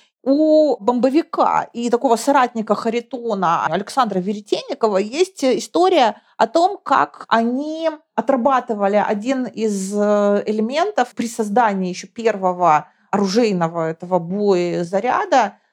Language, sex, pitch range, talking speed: Russian, female, 205-280 Hz, 95 wpm